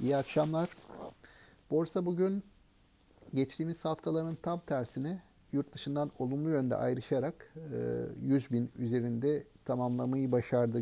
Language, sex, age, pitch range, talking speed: Turkish, male, 50-69, 125-155 Hz, 100 wpm